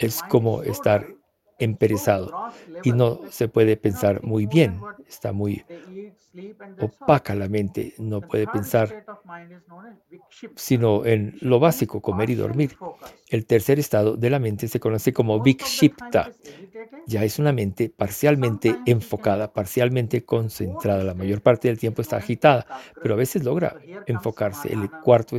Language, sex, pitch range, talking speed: English, male, 110-150 Hz, 135 wpm